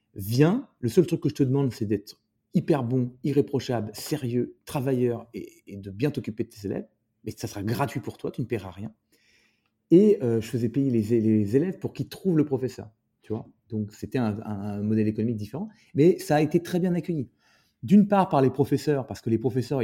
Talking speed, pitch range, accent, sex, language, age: 215 wpm, 110-150 Hz, French, male, French, 40-59